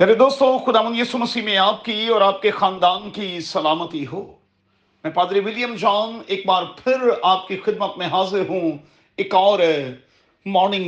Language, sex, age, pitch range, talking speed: Urdu, male, 50-69, 150-225 Hz, 160 wpm